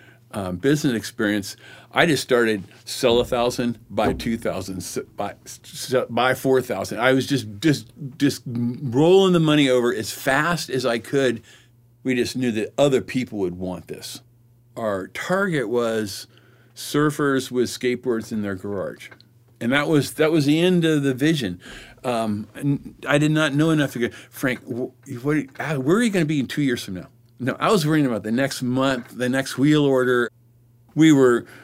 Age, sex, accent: 50-69, male, American